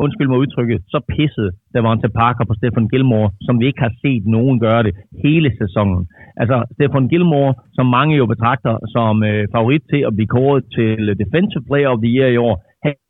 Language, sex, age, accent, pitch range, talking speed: Danish, male, 30-49, native, 110-135 Hz, 200 wpm